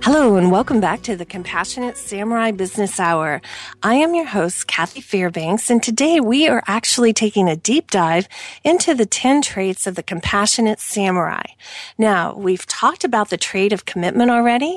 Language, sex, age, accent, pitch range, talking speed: English, female, 40-59, American, 195-260 Hz, 170 wpm